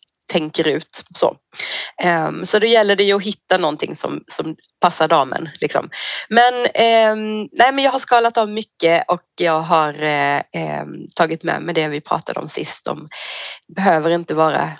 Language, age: Swedish, 30-49